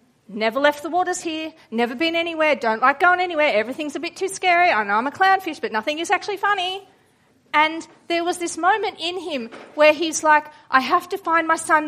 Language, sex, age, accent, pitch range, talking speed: English, female, 40-59, Australian, 285-345 Hz, 215 wpm